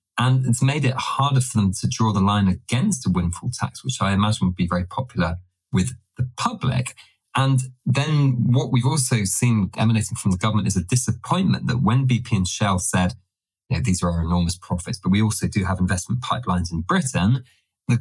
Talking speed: 205 wpm